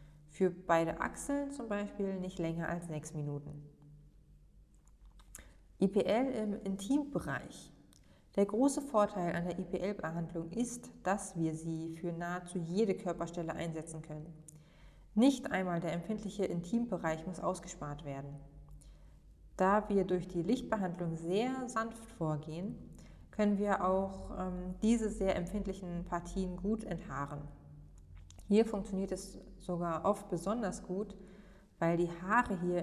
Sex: female